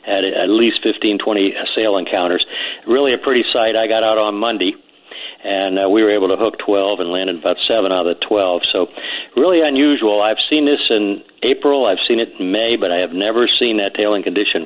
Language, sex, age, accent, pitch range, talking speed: English, male, 50-69, American, 100-140 Hz, 215 wpm